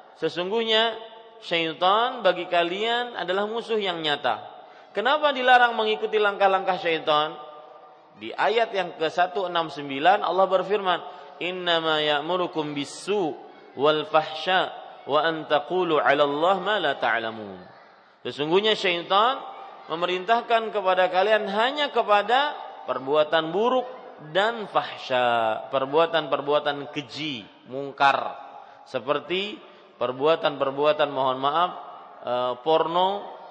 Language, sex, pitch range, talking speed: Malay, male, 150-205 Hz, 90 wpm